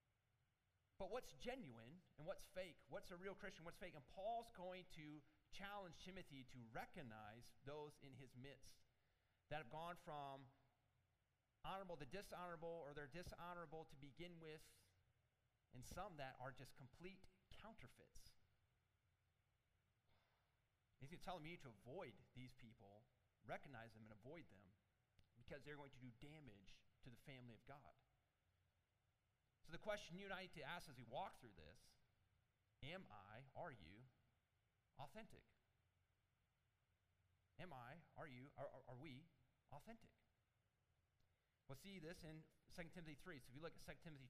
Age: 30-49